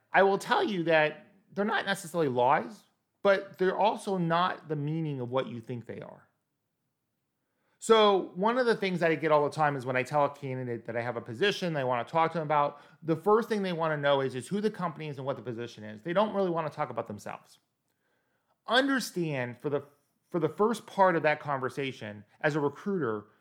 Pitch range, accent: 130-190 Hz, American